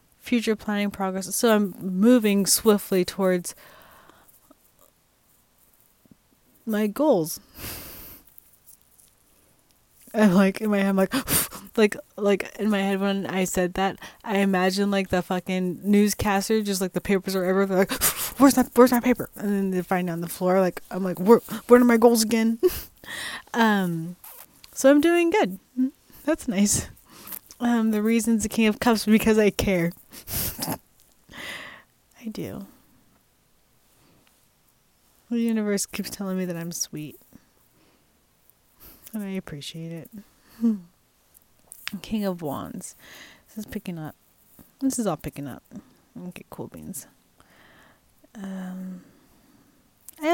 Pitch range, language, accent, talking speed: 185-225 Hz, English, American, 130 wpm